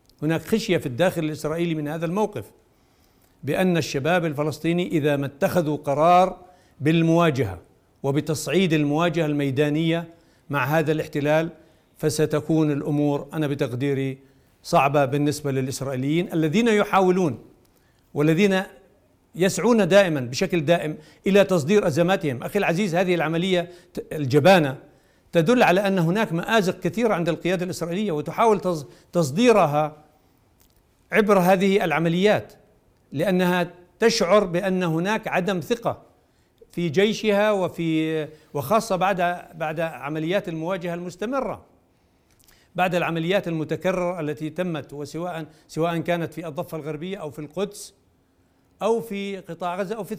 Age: 60-79